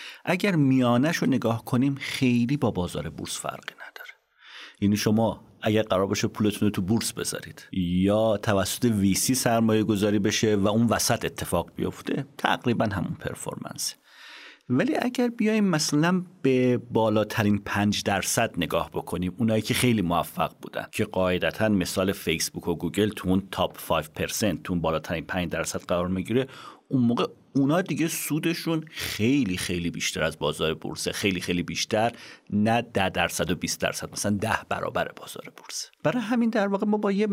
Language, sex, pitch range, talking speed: Persian, male, 95-135 Hz, 160 wpm